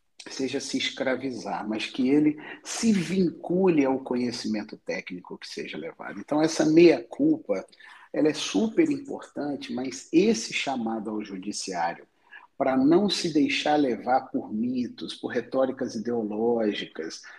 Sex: male